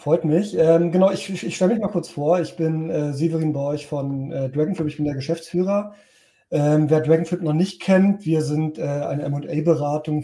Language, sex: English, male